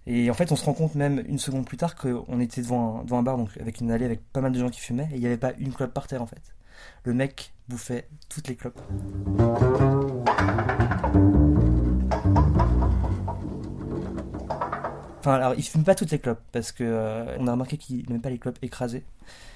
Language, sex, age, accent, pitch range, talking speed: French, male, 20-39, French, 110-130 Hz, 205 wpm